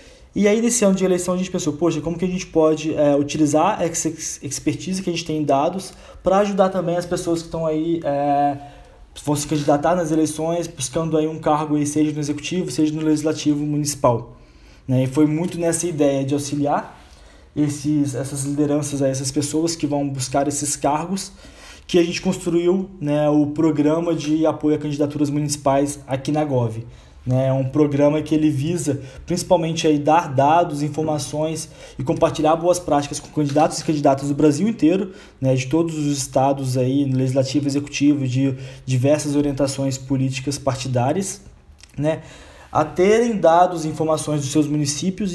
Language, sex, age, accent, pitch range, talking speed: Portuguese, male, 20-39, Brazilian, 140-165 Hz, 170 wpm